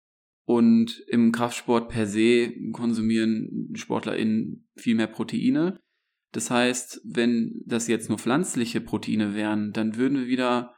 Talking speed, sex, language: 130 wpm, male, German